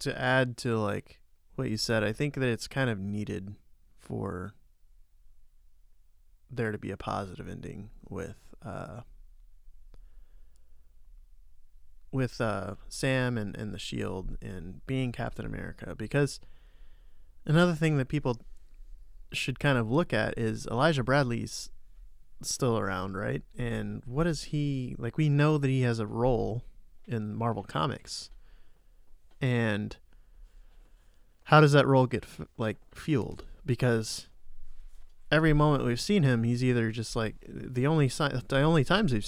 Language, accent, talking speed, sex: English, American, 140 wpm, male